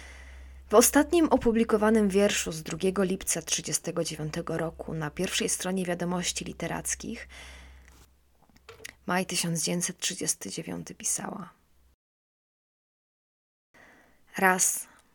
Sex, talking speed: female, 70 wpm